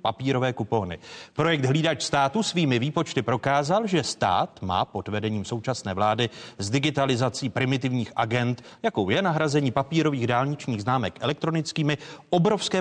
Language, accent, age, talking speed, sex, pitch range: Czech, native, 40-59, 125 wpm, male, 115-155 Hz